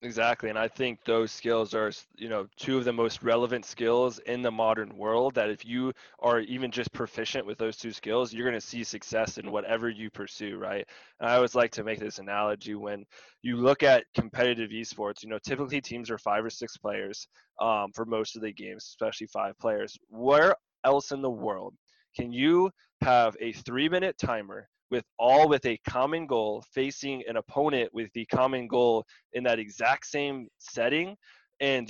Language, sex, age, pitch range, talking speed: English, male, 20-39, 110-130 Hz, 195 wpm